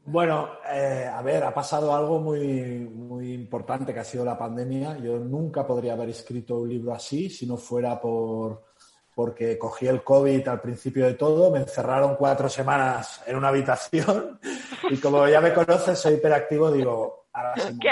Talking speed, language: 170 wpm, Spanish